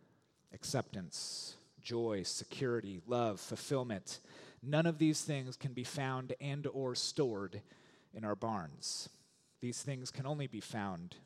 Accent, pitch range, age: American, 130-165 Hz, 30-49